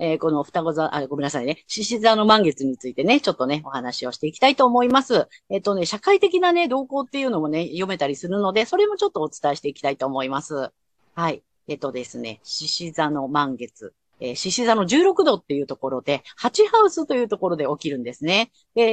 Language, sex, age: Japanese, female, 40-59